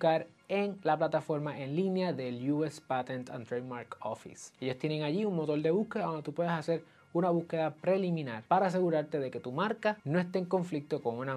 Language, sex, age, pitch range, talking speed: Spanish, male, 20-39, 140-185 Hz, 195 wpm